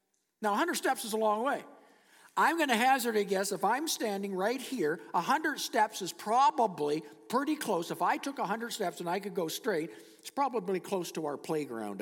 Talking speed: 200 wpm